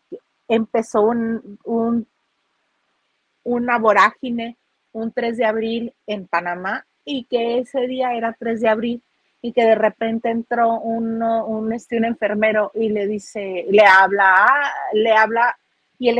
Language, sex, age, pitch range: Spanish, female, 40-59, 210-245 Hz